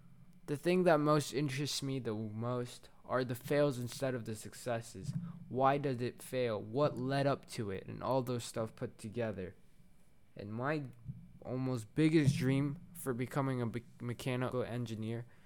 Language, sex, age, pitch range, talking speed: English, male, 20-39, 115-140 Hz, 155 wpm